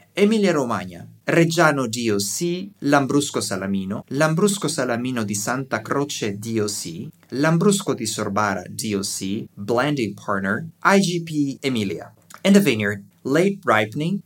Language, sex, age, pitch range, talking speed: English, male, 30-49, 115-160 Hz, 105 wpm